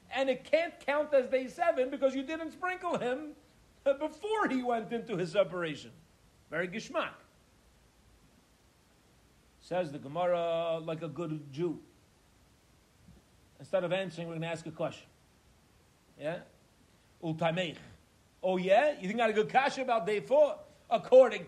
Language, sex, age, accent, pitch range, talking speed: English, male, 40-59, American, 180-265 Hz, 140 wpm